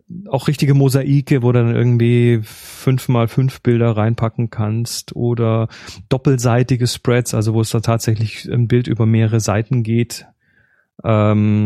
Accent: German